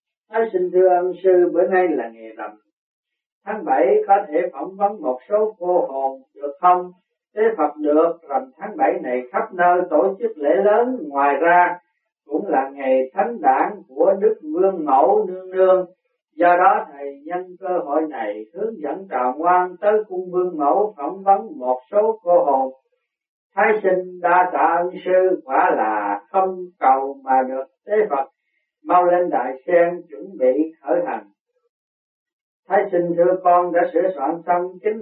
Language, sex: Vietnamese, male